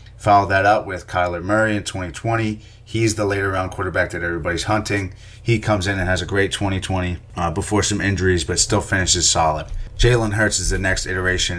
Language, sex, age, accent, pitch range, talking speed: English, male, 30-49, American, 90-105 Hz, 195 wpm